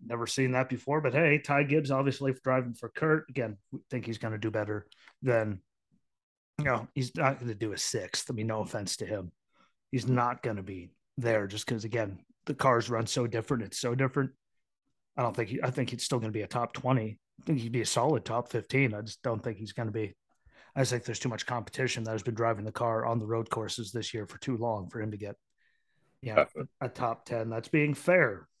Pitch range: 110-135 Hz